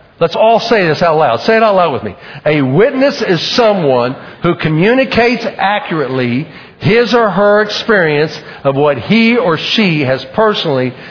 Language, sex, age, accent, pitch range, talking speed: English, male, 50-69, American, 150-205 Hz, 160 wpm